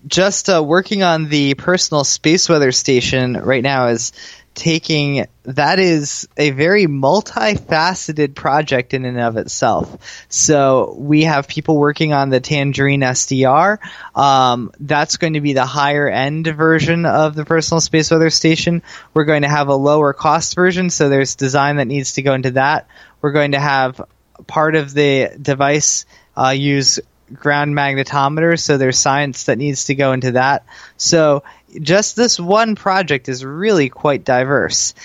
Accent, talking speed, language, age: American, 160 wpm, English, 20-39